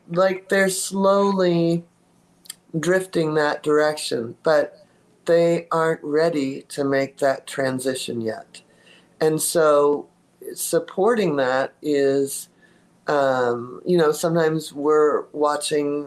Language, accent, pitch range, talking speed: English, American, 140-170 Hz, 95 wpm